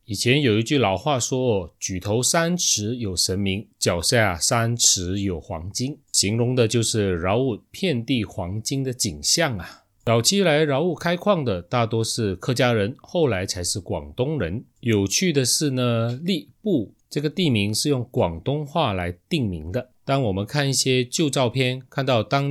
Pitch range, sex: 100-135 Hz, male